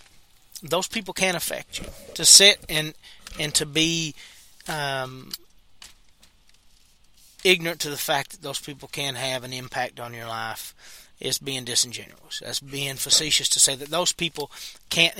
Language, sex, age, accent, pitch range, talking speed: English, male, 40-59, American, 135-165 Hz, 150 wpm